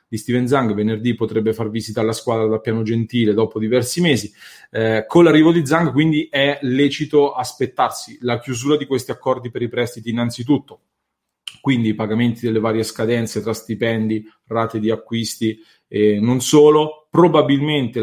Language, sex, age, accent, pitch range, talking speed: English, male, 30-49, Italian, 110-125 Hz, 160 wpm